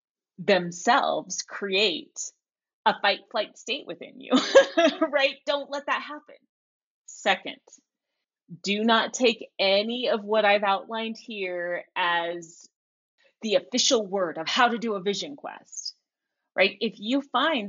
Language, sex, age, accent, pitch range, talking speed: English, female, 30-49, American, 185-275 Hz, 130 wpm